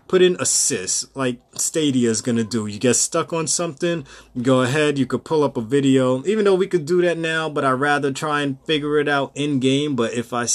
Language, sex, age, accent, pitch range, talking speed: English, male, 30-49, American, 115-150 Hz, 235 wpm